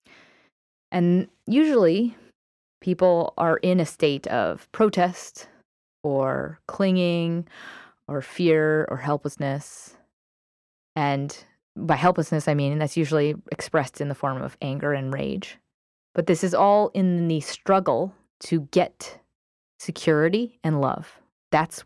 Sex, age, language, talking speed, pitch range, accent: female, 20-39, English, 120 wpm, 150-185 Hz, American